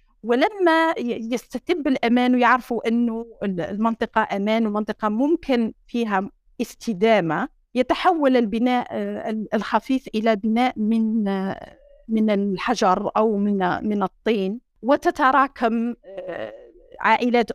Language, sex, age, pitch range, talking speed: Arabic, female, 50-69, 205-245 Hz, 85 wpm